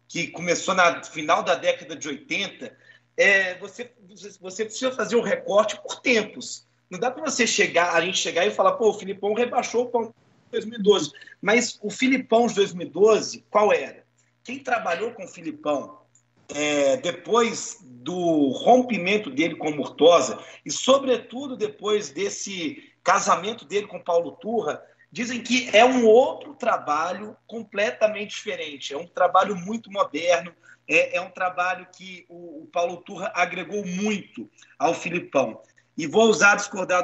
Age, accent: 40-59, Brazilian